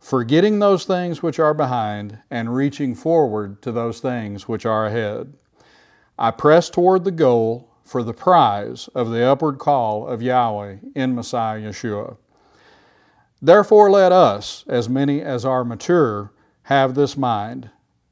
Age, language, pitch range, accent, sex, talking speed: 40-59, English, 115-155 Hz, American, male, 140 wpm